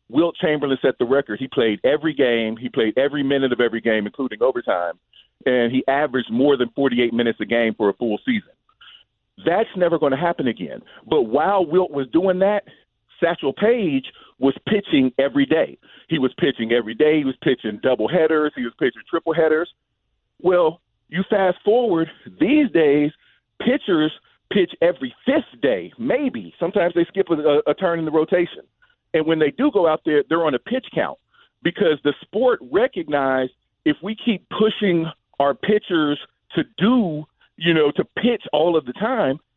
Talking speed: 175 wpm